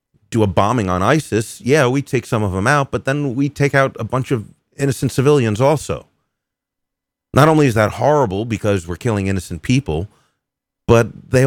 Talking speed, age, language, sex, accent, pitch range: 185 wpm, 30-49, English, male, American, 100-135 Hz